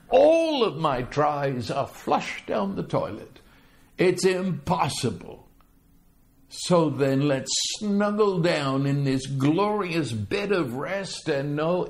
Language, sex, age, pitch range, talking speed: English, male, 60-79, 135-190 Hz, 120 wpm